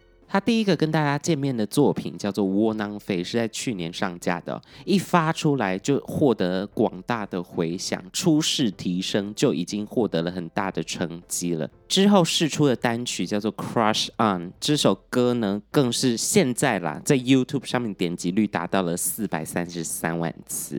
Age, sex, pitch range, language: 20-39, male, 95-150 Hz, Chinese